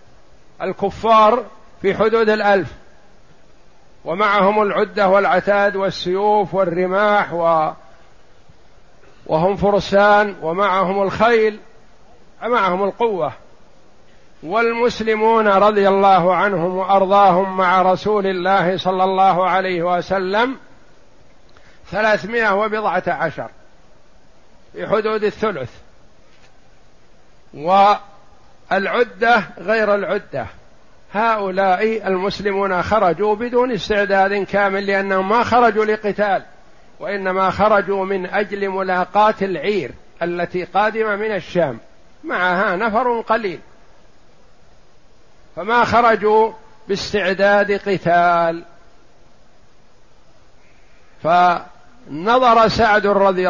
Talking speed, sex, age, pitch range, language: 75 wpm, male, 50-69, 185-215 Hz, Arabic